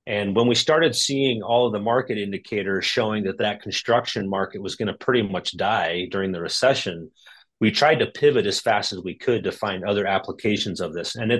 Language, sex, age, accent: English, male, 30-49, American